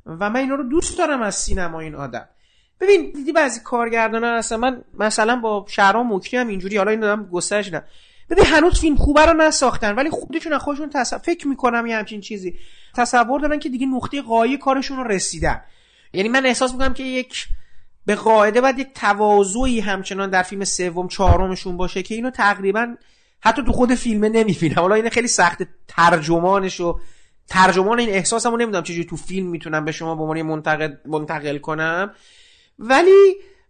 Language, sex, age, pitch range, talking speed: Persian, male, 40-59, 195-270 Hz, 180 wpm